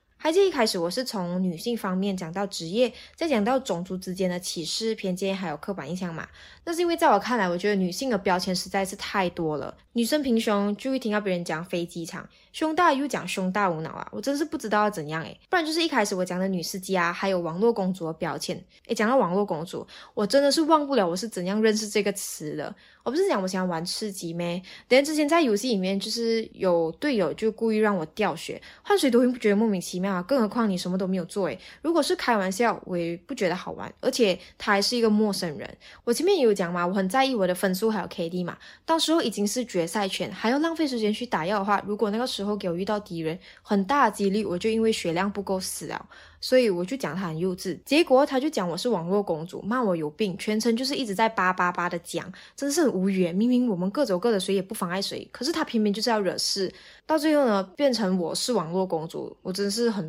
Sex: female